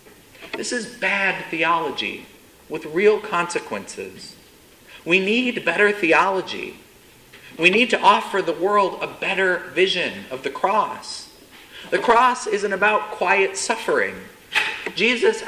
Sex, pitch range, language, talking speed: male, 170-245 Hz, English, 115 wpm